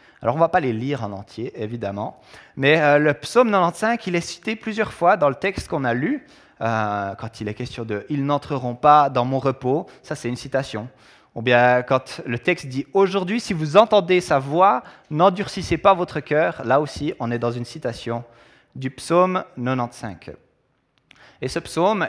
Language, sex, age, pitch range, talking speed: French, male, 20-39, 125-170 Hz, 205 wpm